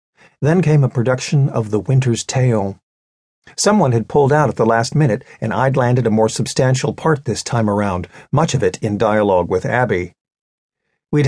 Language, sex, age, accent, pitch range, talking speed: English, male, 50-69, American, 105-145 Hz, 180 wpm